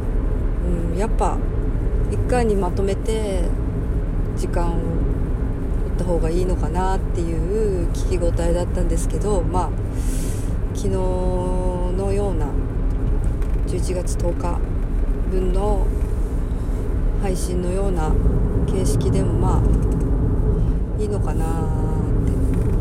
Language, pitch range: Japanese, 90-100 Hz